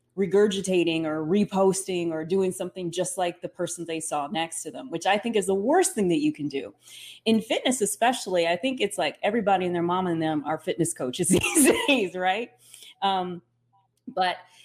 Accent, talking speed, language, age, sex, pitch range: American, 195 wpm, English, 30-49, female, 165-225 Hz